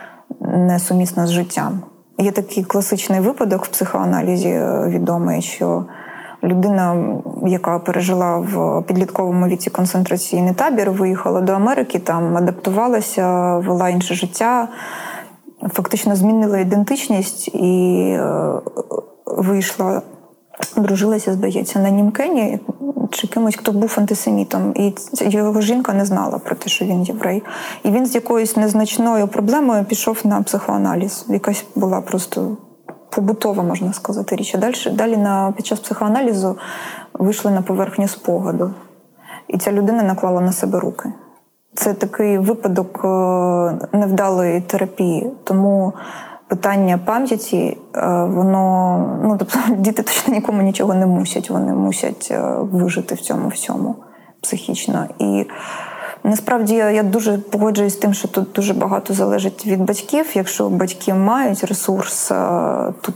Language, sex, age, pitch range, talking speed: Ukrainian, female, 20-39, 180-215 Hz, 125 wpm